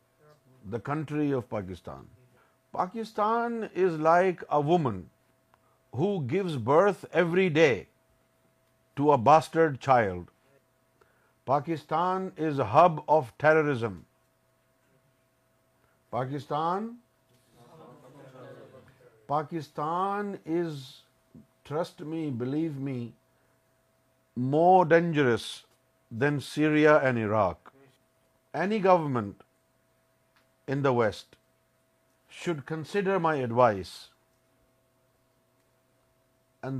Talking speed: 75 wpm